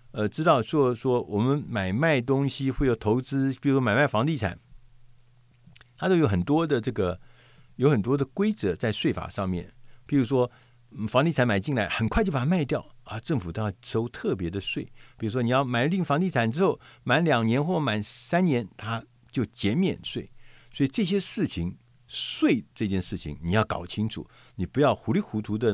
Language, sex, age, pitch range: Chinese, male, 50-69, 105-135 Hz